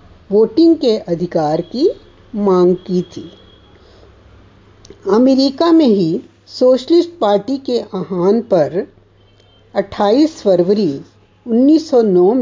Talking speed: 85 wpm